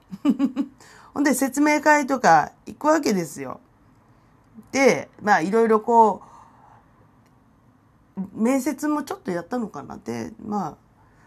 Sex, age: female, 40-59